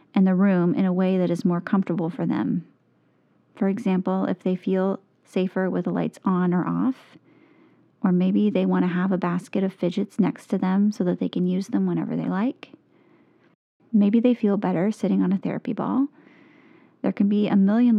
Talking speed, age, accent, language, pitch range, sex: 195 wpm, 30-49, American, English, 185-235 Hz, female